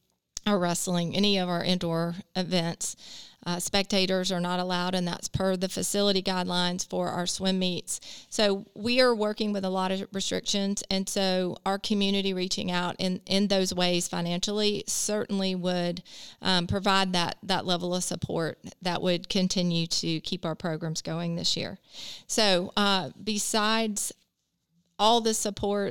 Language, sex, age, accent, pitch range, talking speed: English, female, 30-49, American, 180-200 Hz, 155 wpm